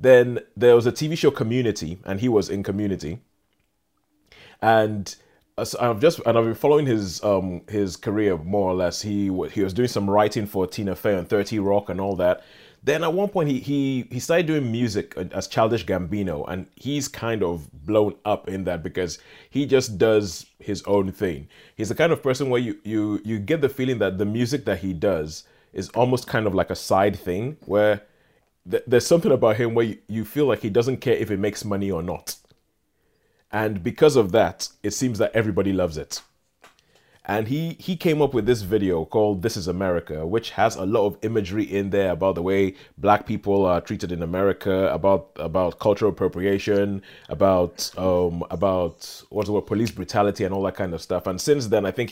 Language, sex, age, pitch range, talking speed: English, male, 30-49, 95-125 Hz, 200 wpm